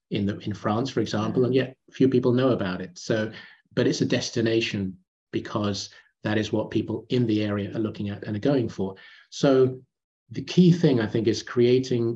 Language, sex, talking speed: English, male, 200 wpm